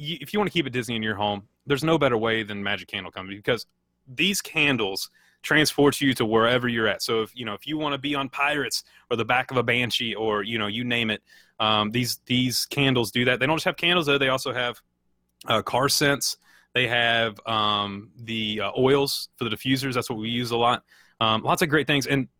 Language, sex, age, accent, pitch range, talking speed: English, male, 30-49, American, 110-140 Hz, 240 wpm